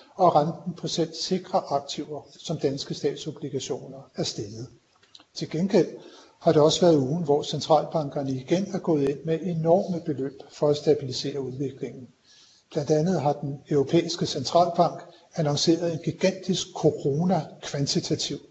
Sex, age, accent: male, 60-79, native